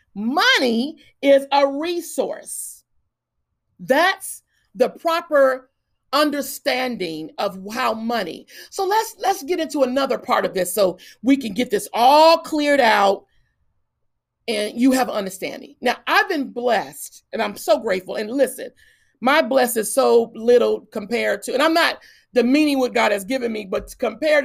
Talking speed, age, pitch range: 145 wpm, 40-59, 215-290 Hz